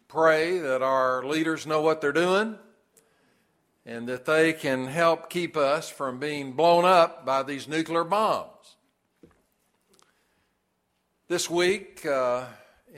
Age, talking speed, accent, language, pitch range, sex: 60-79, 120 wpm, American, English, 135-170 Hz, male